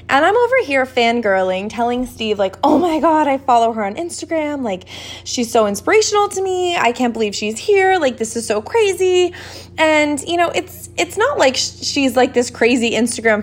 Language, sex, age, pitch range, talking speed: English, female, 20-39, 200-275 Hz, 195 wpm